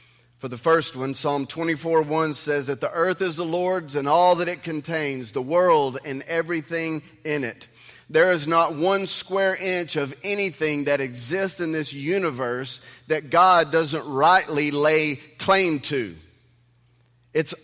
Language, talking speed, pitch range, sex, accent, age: English, 155 wpm, 125-170 Hz, male, American, 30-49